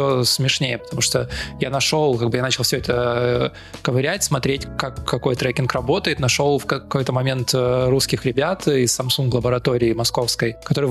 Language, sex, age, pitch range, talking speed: Russian, male, 20-39, 125-155 Hz, 155 wpm